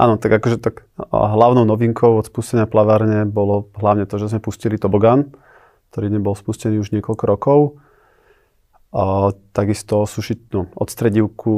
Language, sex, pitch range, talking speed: Slovak, male, 95-110 Hz, 145 wpm